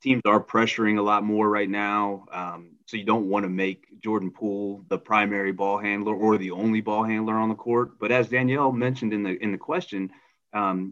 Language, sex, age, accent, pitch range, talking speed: English, male, 30-49, American, 100-120 Hz, 215 wpm